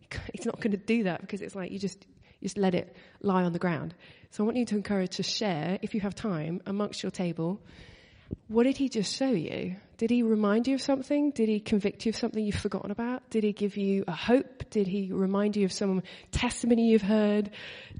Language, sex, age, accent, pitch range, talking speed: English, female, 20-39, British, 180-220 Hz, 235 wpm